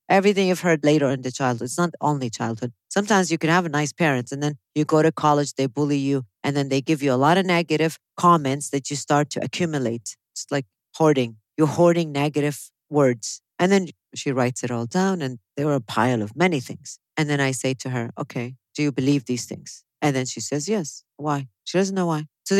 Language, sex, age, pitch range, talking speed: English, female, 40-59, 130-175 Hz, 230 wpm